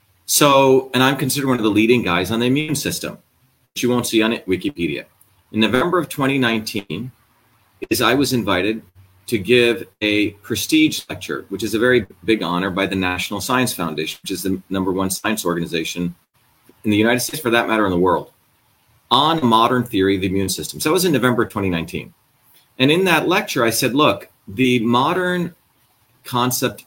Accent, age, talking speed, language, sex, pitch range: American, 40-59, 190 wpm, English, male, 95-130 Hz